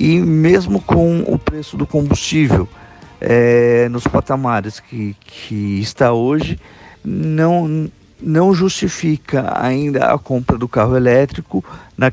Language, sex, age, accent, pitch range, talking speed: Portuguese, male, 50-69, Brazilian, 110-140 Hz, 115 wpm